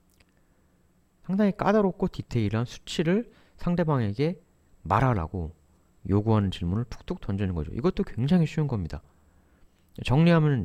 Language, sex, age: Korean, male, 30-49